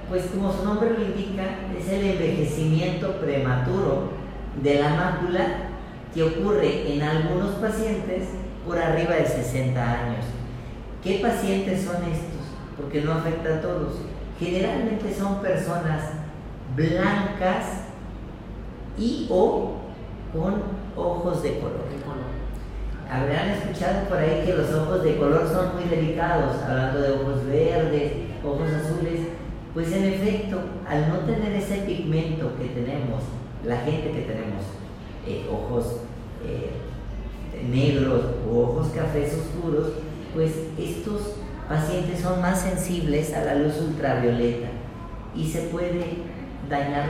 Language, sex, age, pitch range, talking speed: Spanish, female, 40-59, 130-180 Hz, 120 wpm